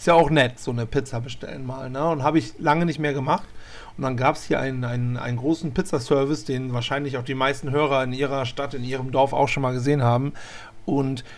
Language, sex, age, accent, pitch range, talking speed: German, male, 40-59, German, 130-160 Hz, 225 wpm